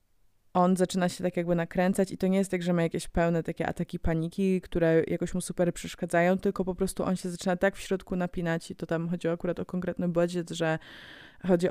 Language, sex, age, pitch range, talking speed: Polish, female, 20-39, 165-180 Hz, 220 wpm